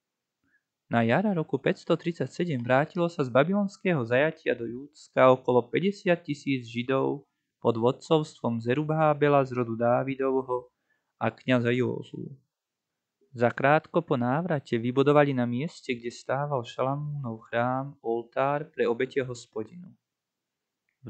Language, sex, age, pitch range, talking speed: Slovak, male, 20-39, 120-155 Hz, 115 wpm